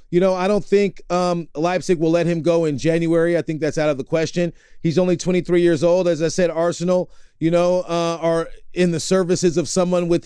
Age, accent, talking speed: 30-49, American, 230 wpm